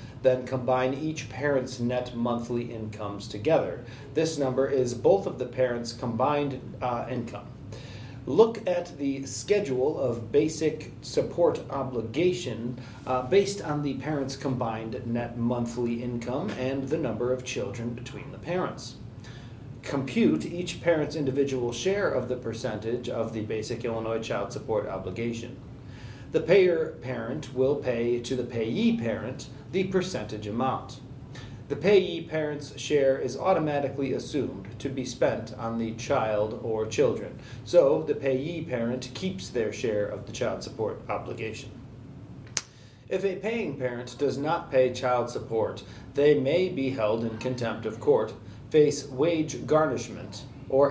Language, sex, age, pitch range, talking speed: English, male, 40-59, 120-145 Hz, 140 wpm